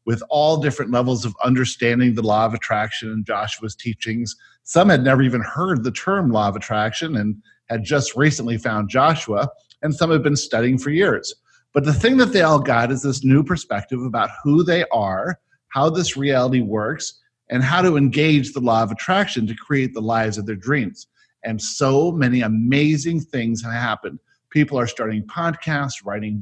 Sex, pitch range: male, 115-155 Hz